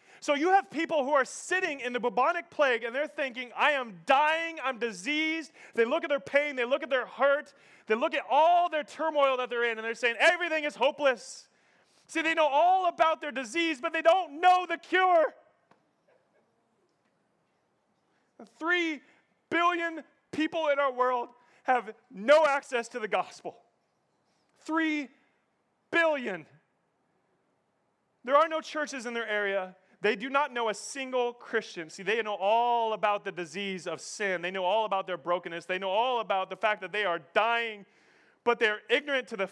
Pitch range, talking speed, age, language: 200-300 Hz, 175 wpm, 30-49, English